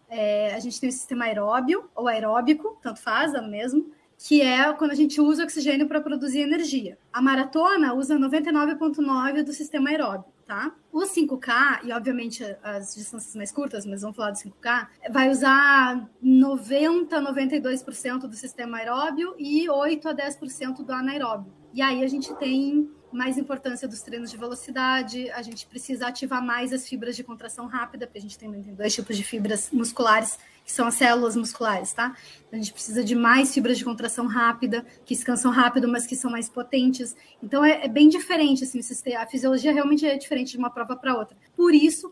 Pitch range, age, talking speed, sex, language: 235-280 Hz, 20-39, 180 wpm, female, Portuguese